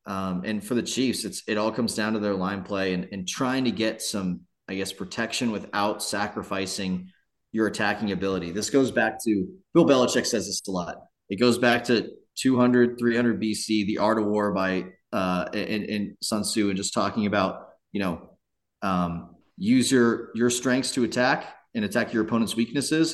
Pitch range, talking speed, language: 100-125 Hz, 190 wpm, English